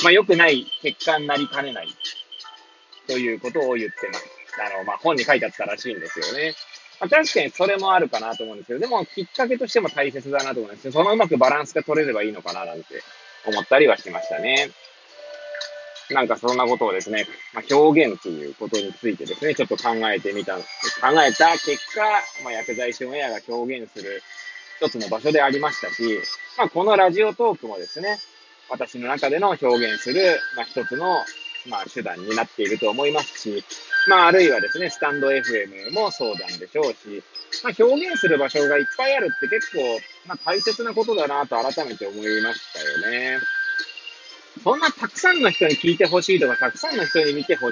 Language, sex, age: Japanese, male, 20-39